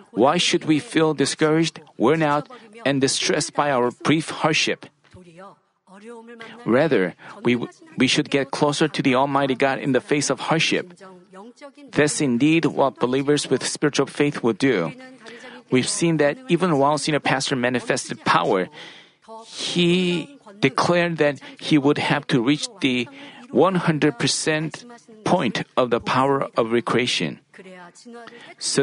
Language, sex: Korean, male